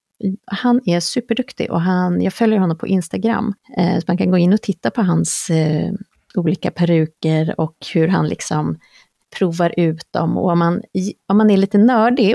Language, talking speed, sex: Swedish, 165 wpm, female